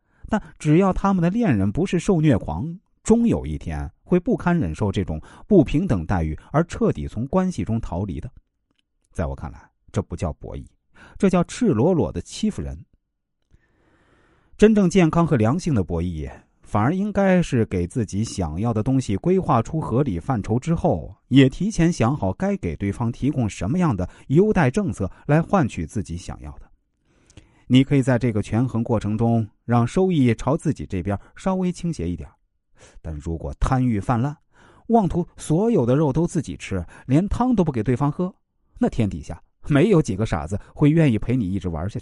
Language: Chinese